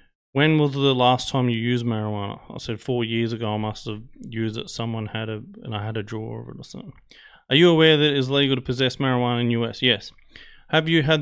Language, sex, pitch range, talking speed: English, male, 115-145 Hz, 250 wpm